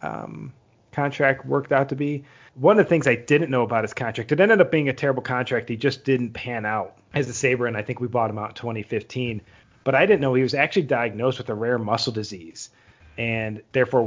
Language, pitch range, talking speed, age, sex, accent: English, 110-130 Hz, 235 wpm, 30-49, male, American